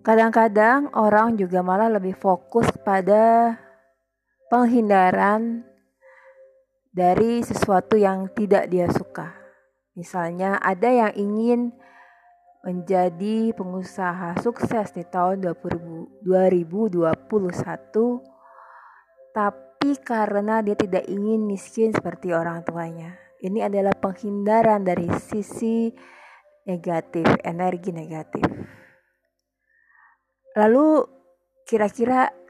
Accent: native